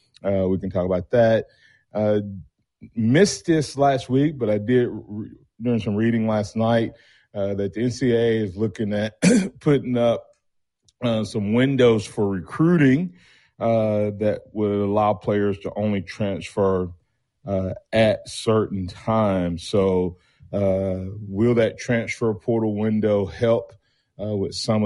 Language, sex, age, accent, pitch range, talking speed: English, male, 40-59, American, 95-120 Hz, 135 wpm